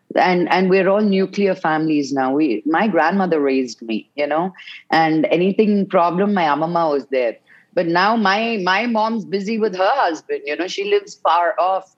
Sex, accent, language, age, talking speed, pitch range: female, Indian, English, 30-49, 180 wpm, 175-225 Hz